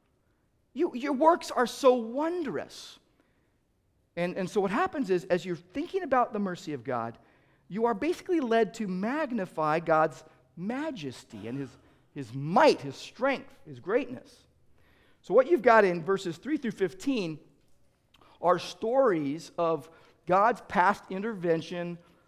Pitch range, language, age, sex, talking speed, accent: 160-245 Hz, English, 50-69, male, 135 wpm, American